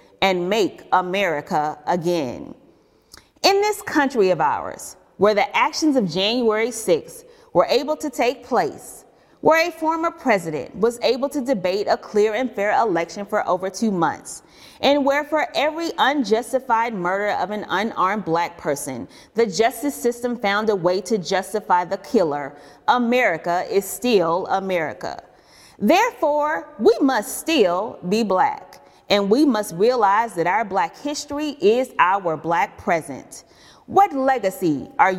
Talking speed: 140 wpm